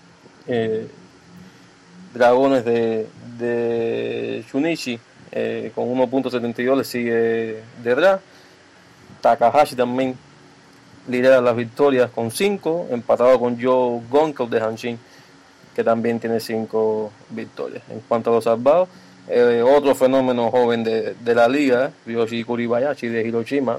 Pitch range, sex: 115-130 Hz, male